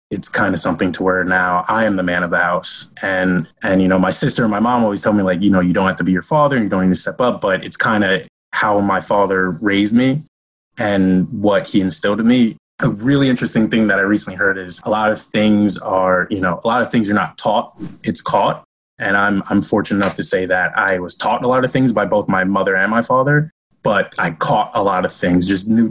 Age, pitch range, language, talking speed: 20-39, 95-110 Hz, English, 260 wpm